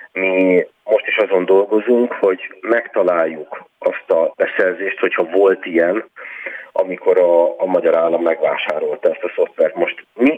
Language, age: Hungarian, 40-59